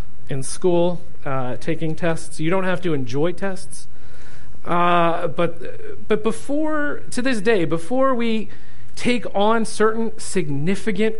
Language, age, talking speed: English, 40-59, 130 wpm